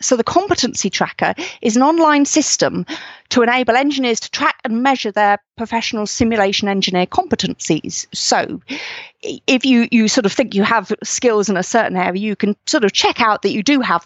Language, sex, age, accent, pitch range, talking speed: English, female, 40-59, British, 195-255 Hz, 190 wpm